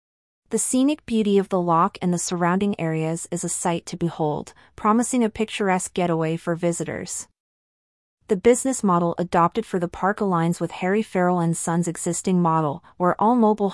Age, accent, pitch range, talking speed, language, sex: 30-49, American, 170-205 Hz, 170 wpm, English, female